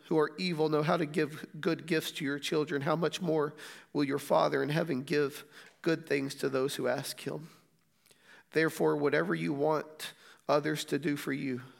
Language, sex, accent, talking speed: English, male, American, 190 wpm